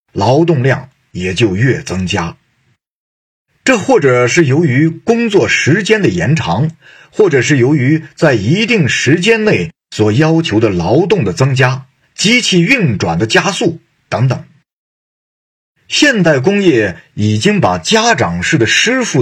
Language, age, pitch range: Chinese, 50-69, 125-175 Hz